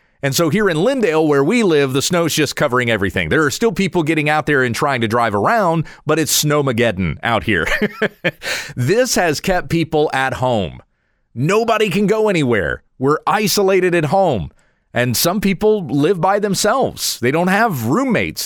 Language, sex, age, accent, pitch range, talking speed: English, male, 30-49, American, 120-180 Hz, 175 wpm